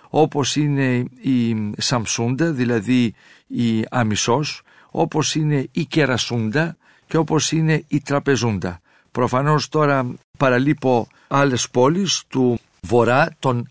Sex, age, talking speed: male, 50-69, 105 wpm